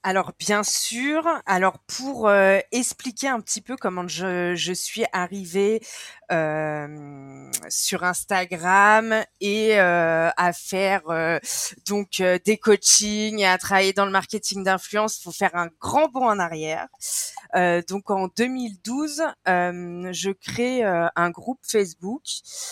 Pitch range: 175-215 Hz